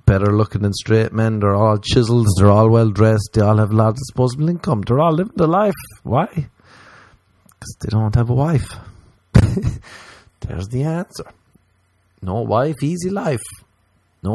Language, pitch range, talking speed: English, 95-125 Hz, 165 wpm